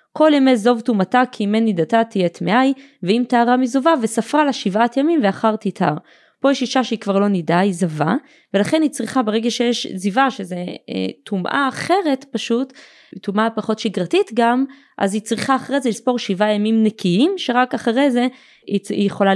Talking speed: 170 wpm